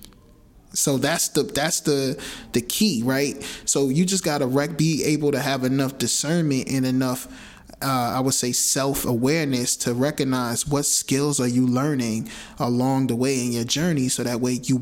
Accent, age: American, 20-39